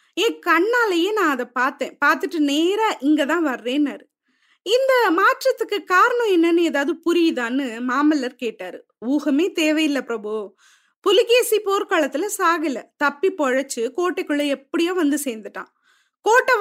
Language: Tamil